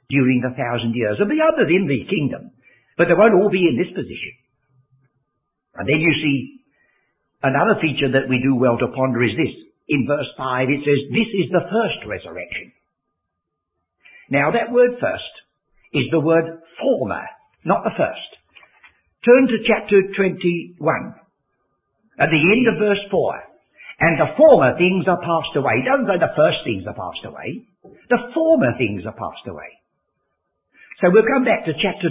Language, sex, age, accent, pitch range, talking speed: English, male, 60-79, British, 145-230 Hz, 170 wpm